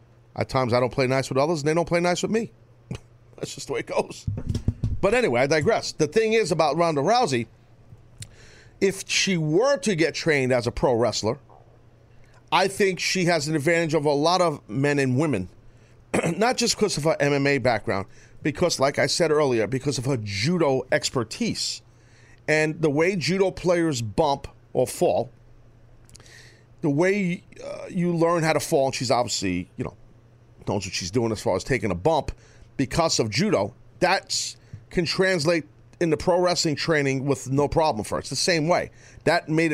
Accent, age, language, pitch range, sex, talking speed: American, 40-59, English, 115-165 Hz, male, 185 wpm